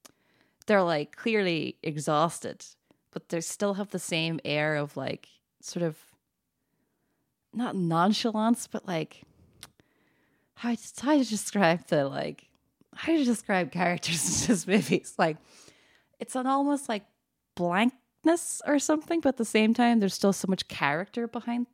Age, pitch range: 20-39, 165-245 Hz